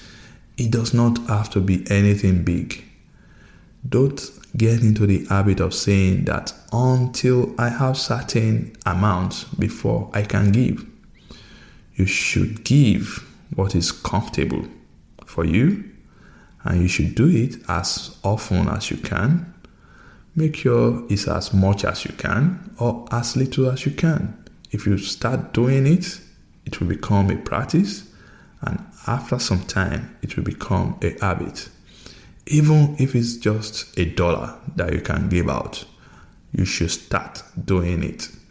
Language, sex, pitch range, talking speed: English, male, 95-125 Hz, 145 wpm